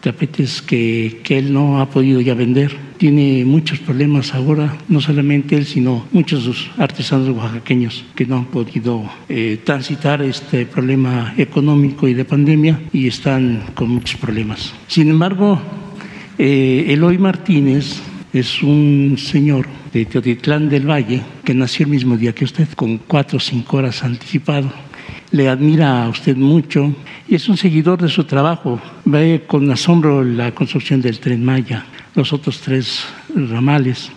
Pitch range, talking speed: 130-155 Hz, 155 wpm